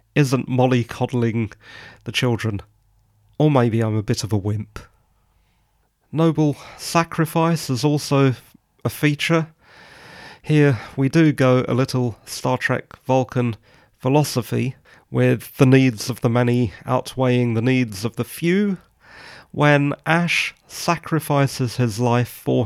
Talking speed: 125 wpm